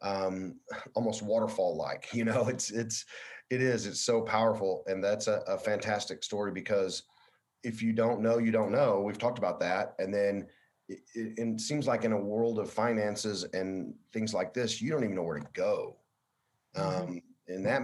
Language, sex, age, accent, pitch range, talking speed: English, male, 30-49, American, 95-115 Hz, 190 wpm